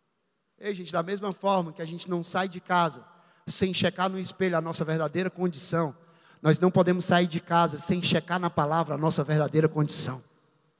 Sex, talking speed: male, 190 wpm